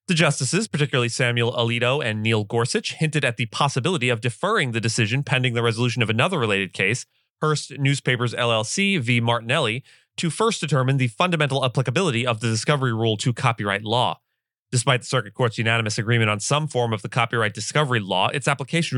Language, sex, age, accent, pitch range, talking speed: English, male, 30-49, American, 115-140 Hz, 180 wpm